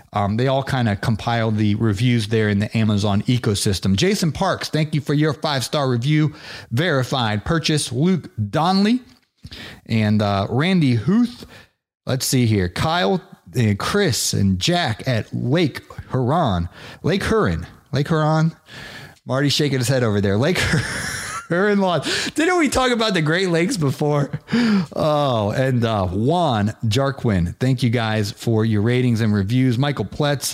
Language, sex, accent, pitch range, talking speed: English, male, American, 110-145 Hz, 155 wpm